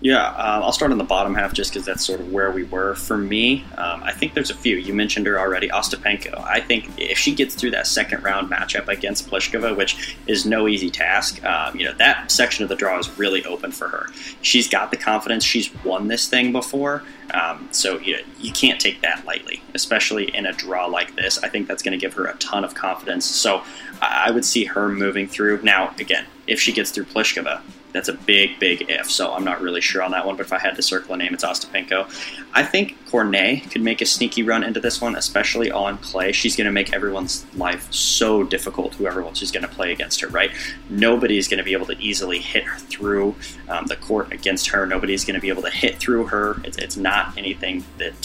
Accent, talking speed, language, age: American, 240 wpm, English, 20-39